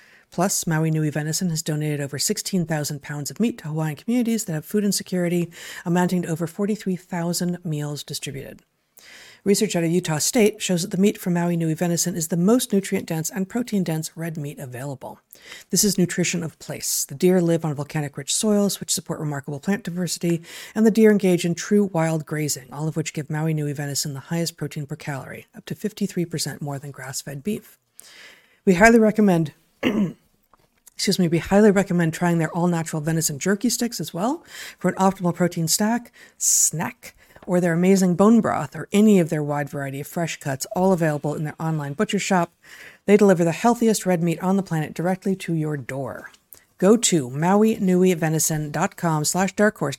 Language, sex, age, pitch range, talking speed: English, female, 50-69, 155-195 Hz, 185 wpm